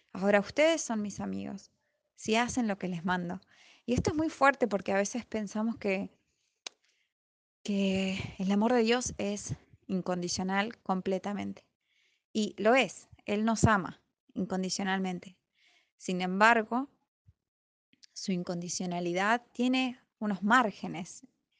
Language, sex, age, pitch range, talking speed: Spanish, female, 20-39, 190-230 Hz, 120 wpm